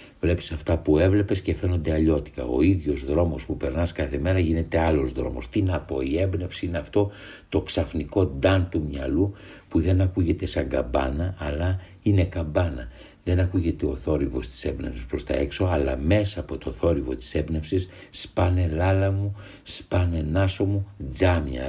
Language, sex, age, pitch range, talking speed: Greek, male, 60-79, 80-95 Hz, 165 wpm